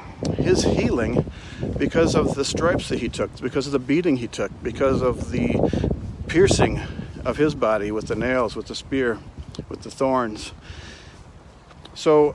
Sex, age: male, 60-79